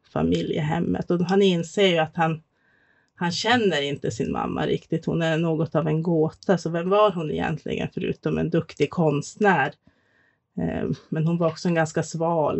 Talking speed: 165 wpm